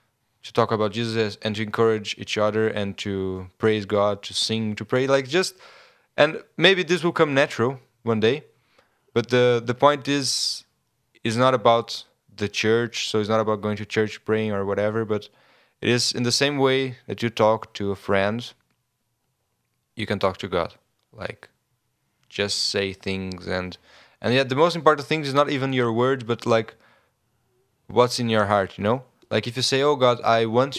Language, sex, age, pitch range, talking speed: English, male, 20-39, 105-125 Hz, 190 wpm